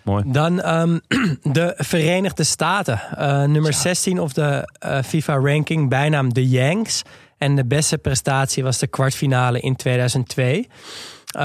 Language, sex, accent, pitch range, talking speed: Dutch, male, Dutch, 130-155 Hz, 125 wpm